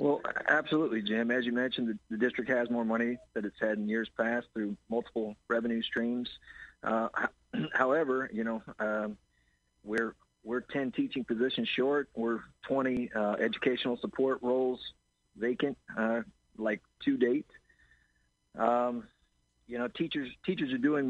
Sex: male